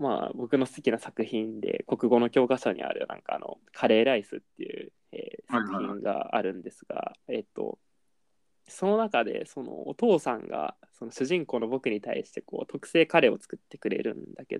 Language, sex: Japanese, male